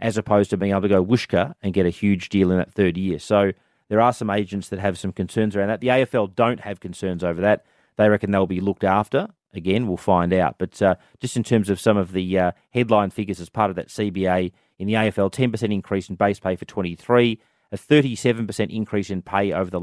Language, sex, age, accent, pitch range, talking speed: English, male, 30-49, Australian, 95-110 Hz, 240 wpm